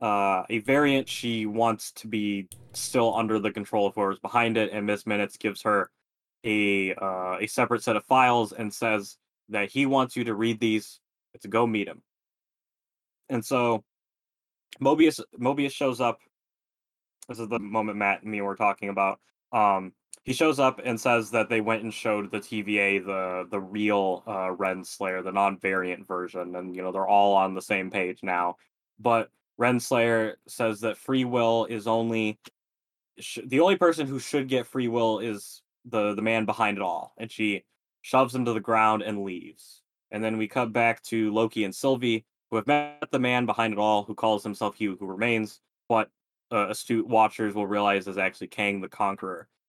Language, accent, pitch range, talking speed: English, American, 100-120 Hz, 190 wpm